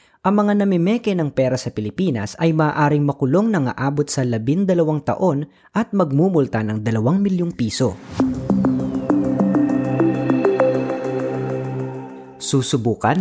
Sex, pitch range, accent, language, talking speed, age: female, 115-170 Hz, native, Filipino, 100 wpm, 20-39